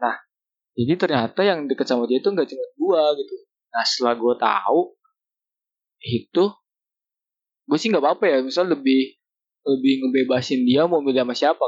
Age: 20-39